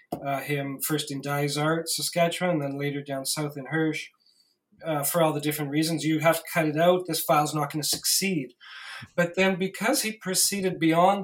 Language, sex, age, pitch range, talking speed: English, male, 40-59, 150-180 Hz, 200 wpm